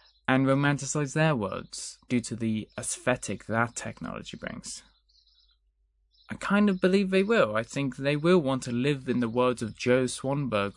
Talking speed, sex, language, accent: 165 wpm, male, English, British